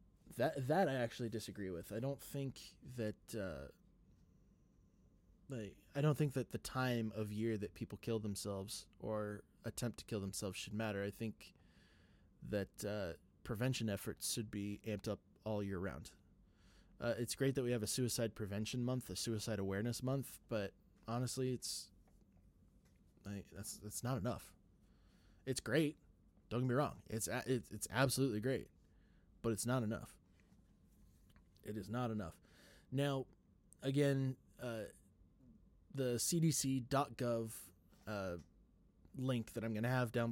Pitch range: 100-125 Hz